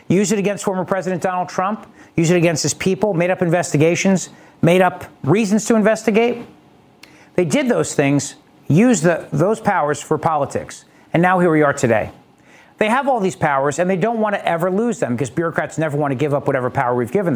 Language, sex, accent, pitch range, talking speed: English, male, American, 165-225 Hz, 205 wpm